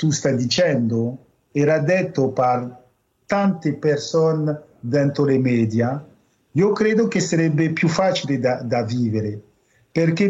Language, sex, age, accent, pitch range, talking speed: Italian, male, 50-69, native, 150-200 Hz, 115 wpm